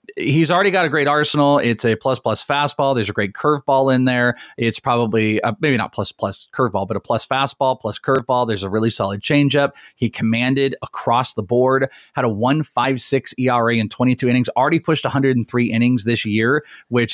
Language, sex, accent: English, male, American